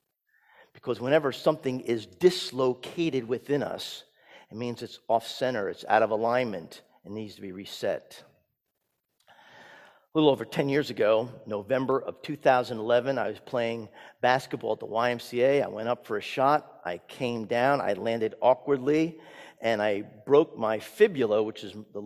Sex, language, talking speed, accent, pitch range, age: male, English, 150 wpm, American, 115-145 Hz, 50-69